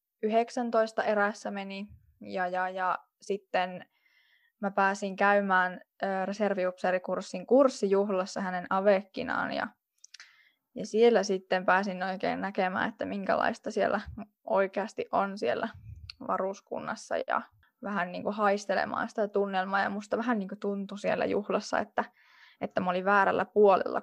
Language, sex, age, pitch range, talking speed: Finnish, female, 10-29, 190-220 Hz, 115 wpm